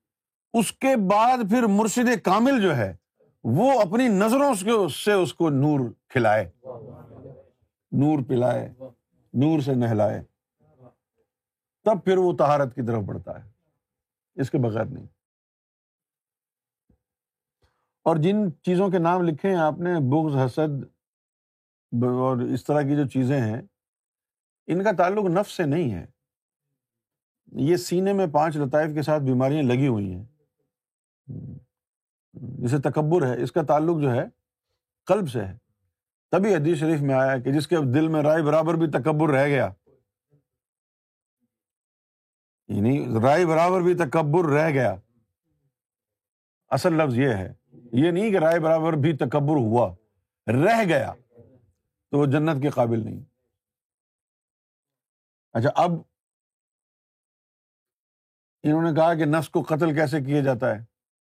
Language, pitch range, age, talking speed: Urdu, 120-170 Hz, 50-69, 135 wpm